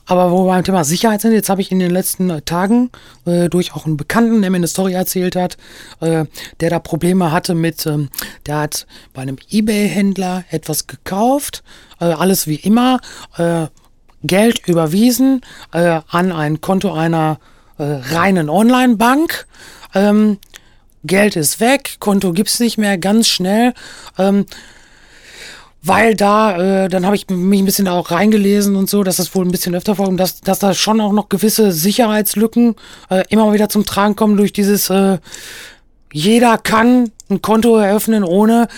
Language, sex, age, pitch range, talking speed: German, female, 40-59, 175-215 Hz, 170 wpm